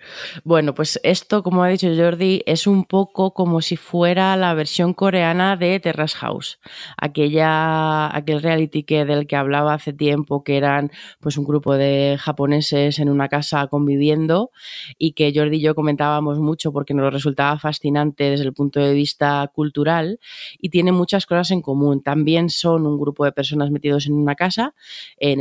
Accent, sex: Spanish, female